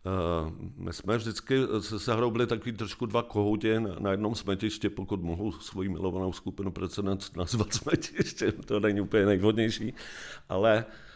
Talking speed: 140 wpm